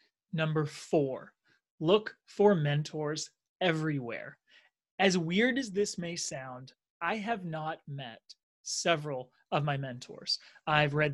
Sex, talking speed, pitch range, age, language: male, 120 wpm, 145-195 Hz, 30-49, English